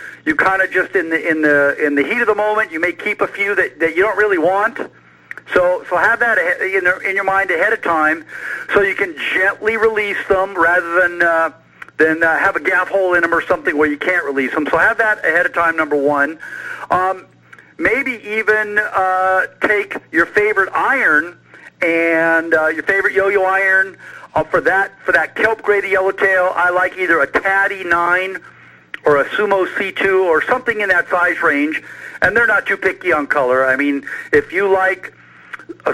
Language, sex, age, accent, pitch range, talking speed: English, male, 50-69, American, 165-210 Hz, 200 wpm